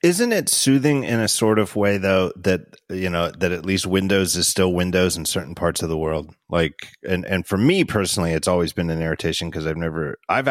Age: 30-49